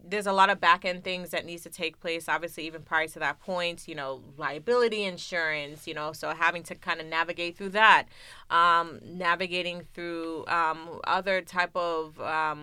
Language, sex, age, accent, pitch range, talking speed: English, female, 20-39, American, 160-185 Hz, 185 wpm